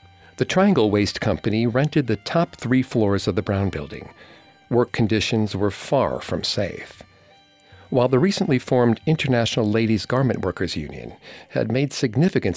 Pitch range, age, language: 100-125 Hz, 50-69, English